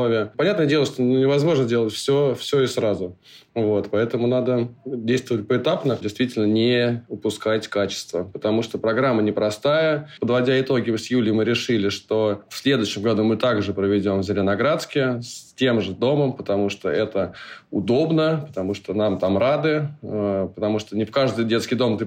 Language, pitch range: Russian, 105-130 Hz